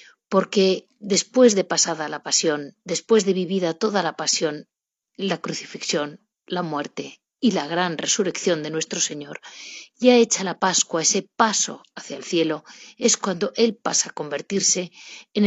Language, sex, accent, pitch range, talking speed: Spanish, female, Spanish, 180-235 Hz, 150 wpm